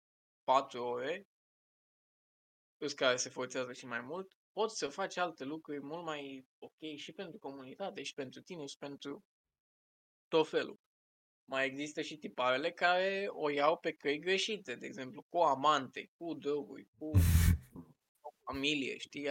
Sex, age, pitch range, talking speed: male, 20-39, 135-180 Hz, 145 wpm